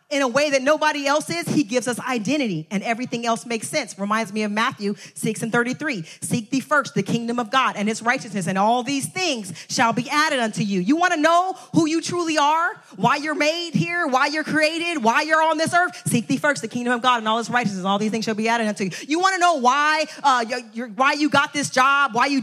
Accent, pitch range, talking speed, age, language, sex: American, 185-270 Hz, 250 wpm, 30-49, English, female